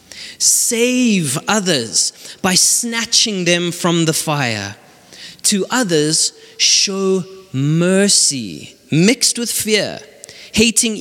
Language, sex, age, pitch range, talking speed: English, male, 30-49, 160-205 Hz, 85 wpm